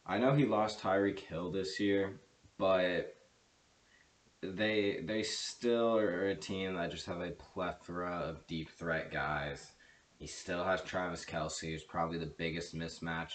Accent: American